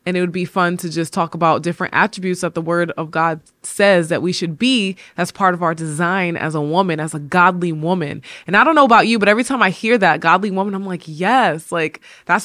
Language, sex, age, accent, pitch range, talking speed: English, female, 20-39, American, 165-205 Hz, 250 wpm